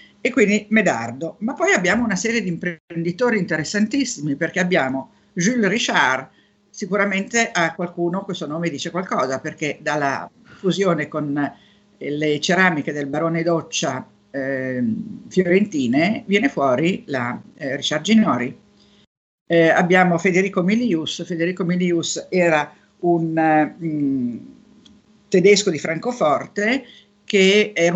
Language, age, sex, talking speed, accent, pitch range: Italian, 50-69, female, 115 wpm, native, 165-225 Hz